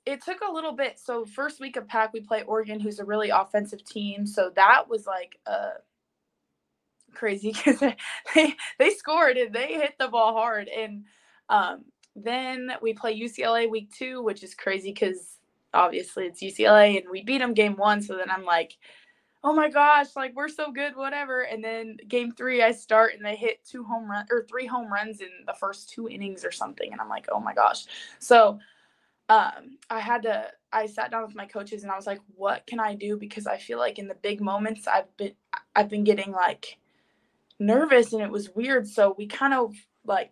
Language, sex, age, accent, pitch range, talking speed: English, female, 20-39, American, 205-255 Hz, 205 wpm